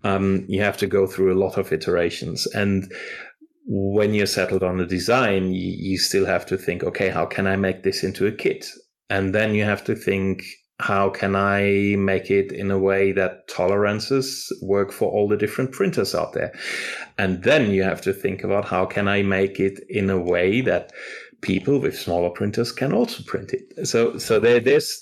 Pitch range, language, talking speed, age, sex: 95-110 Hz, English, 200 wpm, 30-49, male